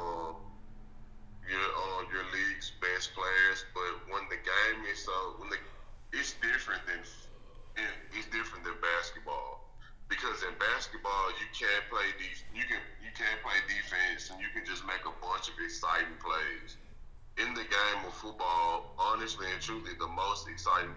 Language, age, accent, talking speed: English, 20-39, American, 155 wpm